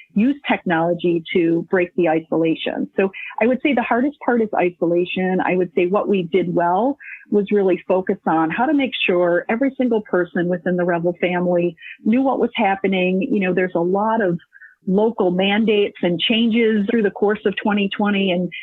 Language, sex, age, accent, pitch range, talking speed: English, female, 40-59, American, 185-230 Hz, 185 wpm